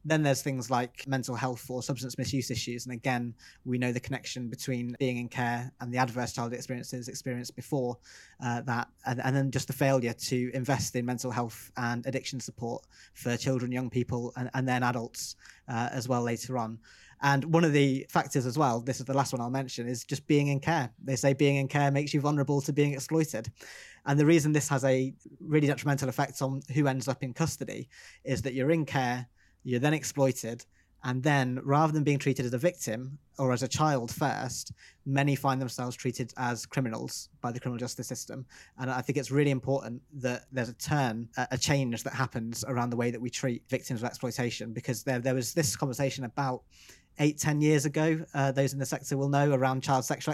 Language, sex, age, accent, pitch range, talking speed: English, male, 20-39, British, 125-140 Hz, 210 wpm